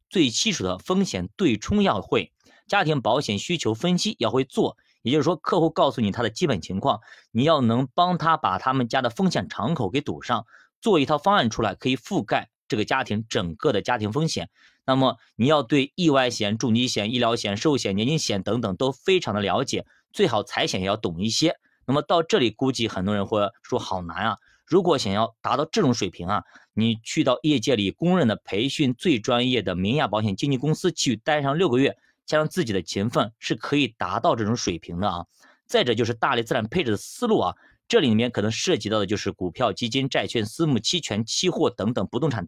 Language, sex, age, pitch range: Chinese, male, 30-49, 105-155 Hz